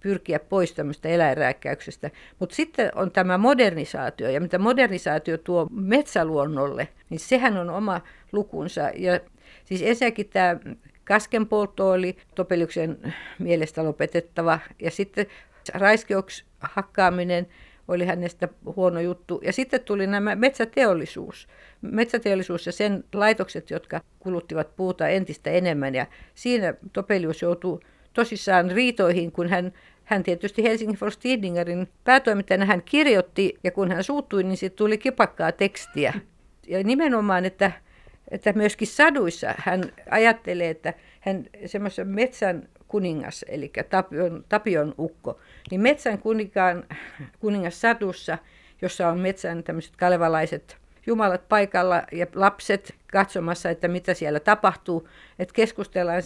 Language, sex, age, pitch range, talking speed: Finnish, female, 60-79, 175-210 Hz, 115 wpm